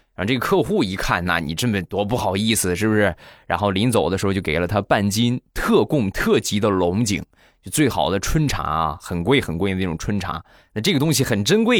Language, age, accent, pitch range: Chinese, 20-39, native, 90-125 Hz